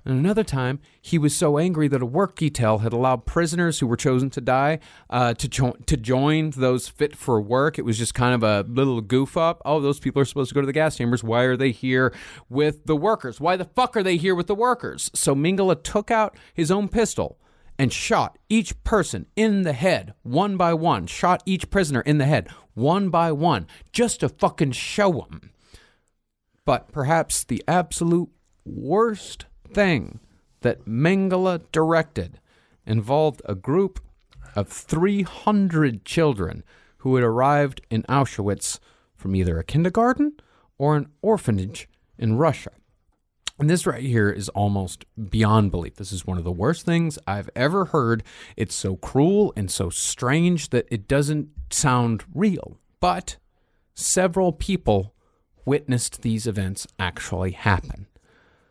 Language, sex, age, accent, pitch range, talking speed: English, male, 30-49, American, 110-170 Hz, 165 wpm